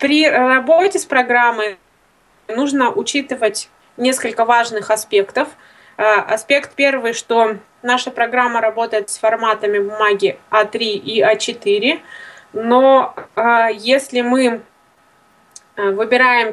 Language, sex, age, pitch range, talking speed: Russian, female, 20-39, 210-255 Hz, 90 wpm